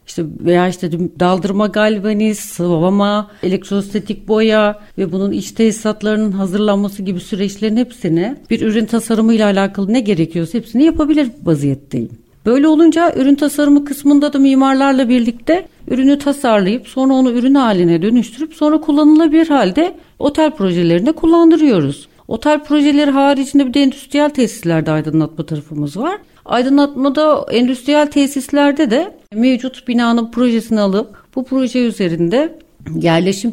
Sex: female